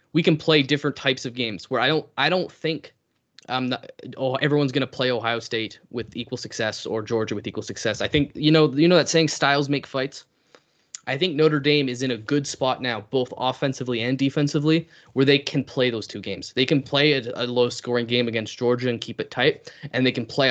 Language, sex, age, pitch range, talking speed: English, male, 10-29, 120-150 Hz, 225 wpm